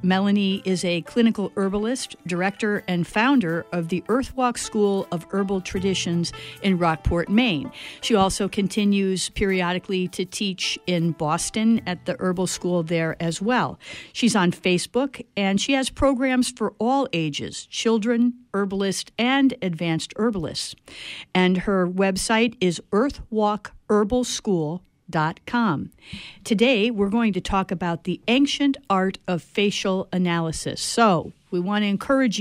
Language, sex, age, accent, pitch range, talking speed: English, female, 50-69, American, 180-230 Hz, 130 wpm